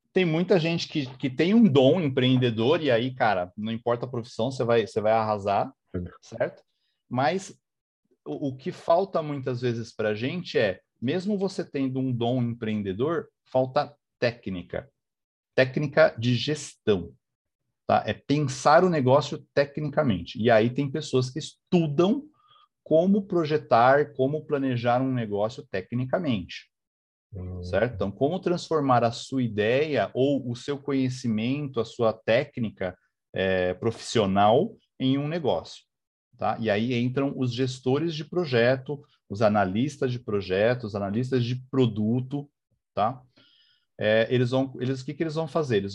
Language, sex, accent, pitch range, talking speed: Portuguese, male, Brazilian, 115-150 Hz, 140 wpm